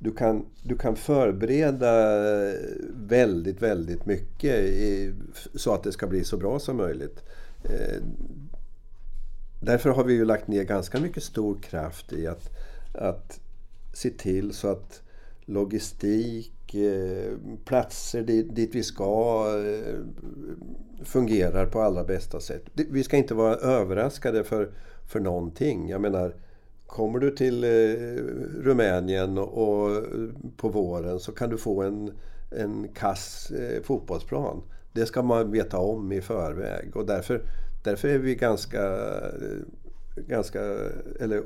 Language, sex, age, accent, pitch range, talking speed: Swedish, male, 50-69, native, 100-115 Hz, 120 wpm